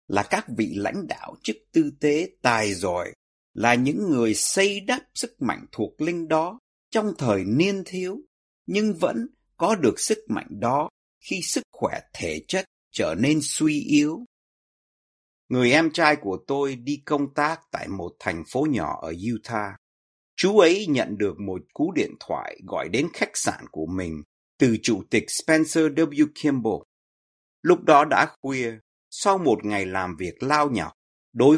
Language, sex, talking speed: Vietnamese, male, 165 wpm